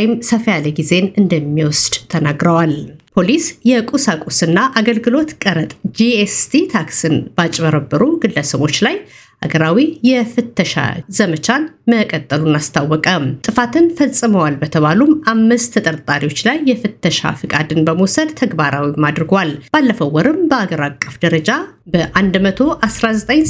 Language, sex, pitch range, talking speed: Amharic, female, 155-245 Hz, 85 wpm